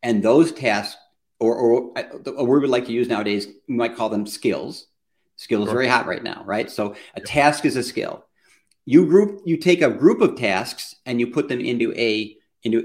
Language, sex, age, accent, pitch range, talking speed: English, male, 50-69, American, 120-190 Hz, 205 wpm